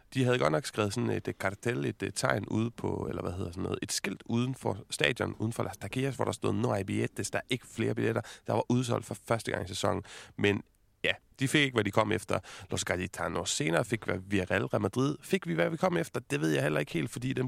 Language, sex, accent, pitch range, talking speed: Danish, male, native, 105-125 Hz, 255 wpm